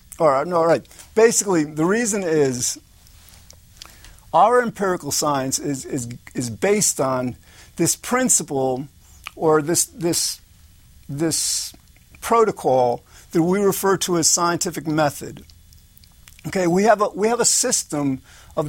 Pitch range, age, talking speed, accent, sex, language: 145-200 Hz, 50-69, 125 wpm, American, male, English